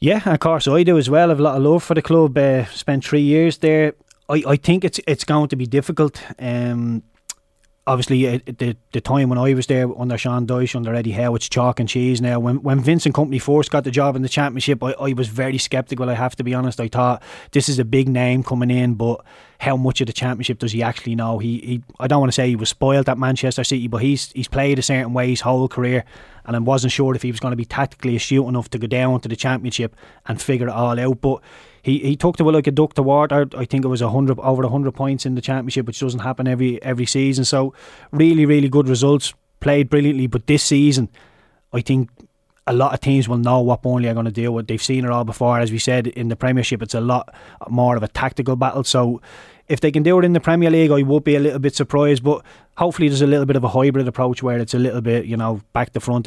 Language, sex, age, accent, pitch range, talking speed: English, male, 20-39, Irish, 125-140 Hz, 260 wpm